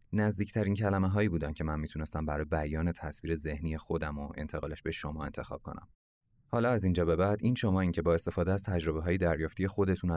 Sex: male